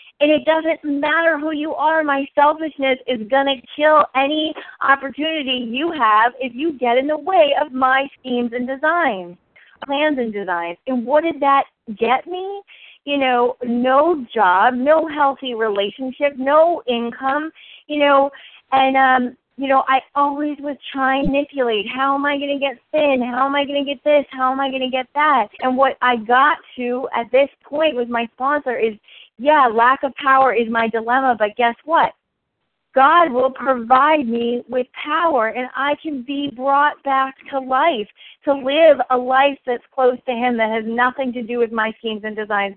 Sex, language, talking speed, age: female, English, 185 wpm, 40-59